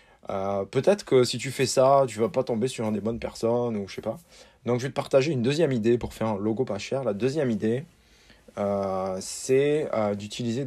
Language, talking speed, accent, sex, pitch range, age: French, 230 wpm, French, male, 100-120 Hz, 20-39